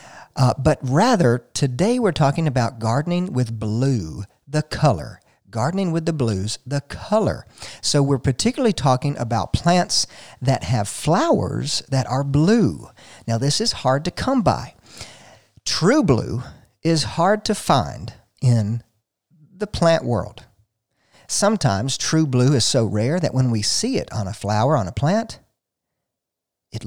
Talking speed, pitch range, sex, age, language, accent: 145 wpm, 115-160 Hz, male, 50-69, English, American